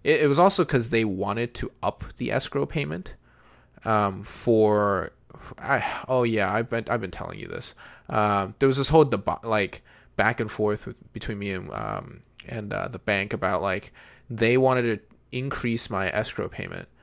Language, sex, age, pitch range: English, male, 20-39, 100-125 Hz